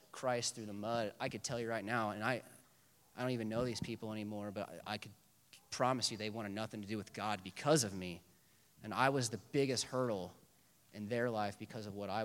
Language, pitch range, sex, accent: English, 100-120 Hz, male, American